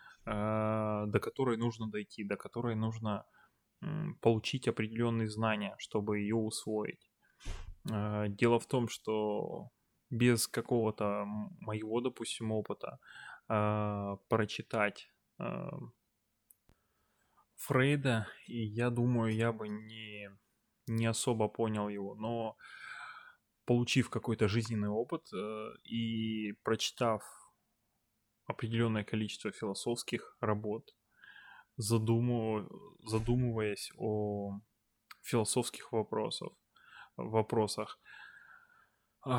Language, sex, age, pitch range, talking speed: Russian, male, 20-39, 105-120 Hz, 75 wpm